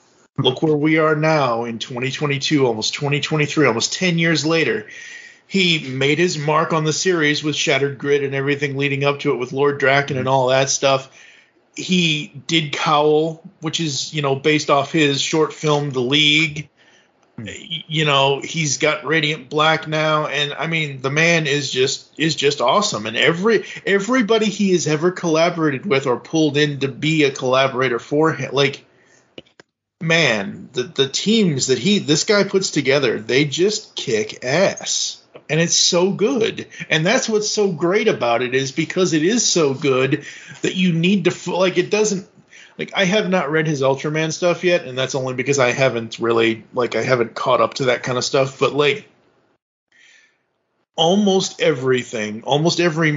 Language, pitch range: English, 135-170 Hz